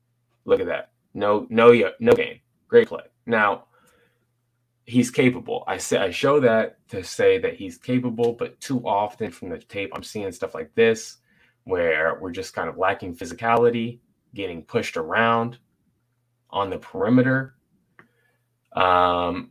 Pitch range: 100-125 Hz